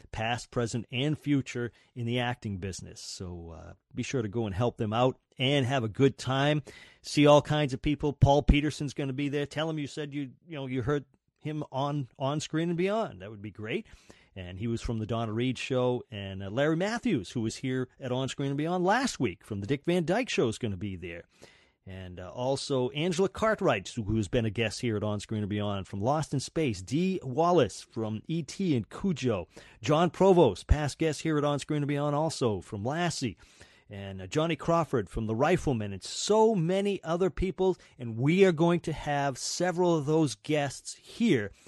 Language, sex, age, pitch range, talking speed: English, male, 40-59, 110-155 Hz, 210 wpm